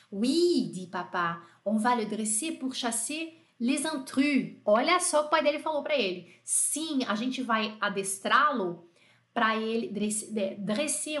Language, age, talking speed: French, 30-49, 155 wpm